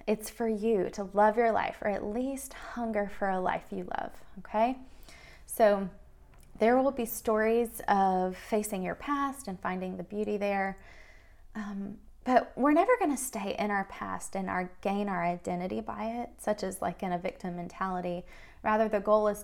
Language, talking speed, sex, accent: English, 180 wpm, female, American